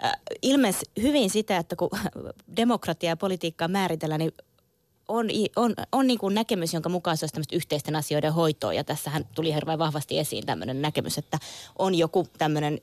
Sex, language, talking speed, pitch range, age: female, Finnish, 150 wpm, 150-175 Hz, 20-39